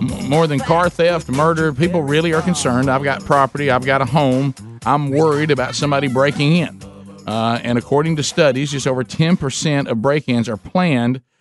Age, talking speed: 50-69, 180 wpm